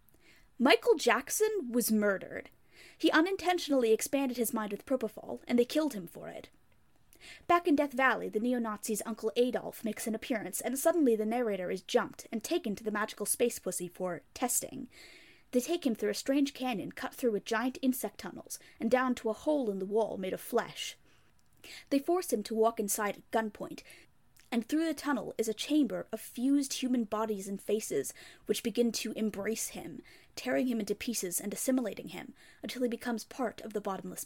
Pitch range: 215-280 Hz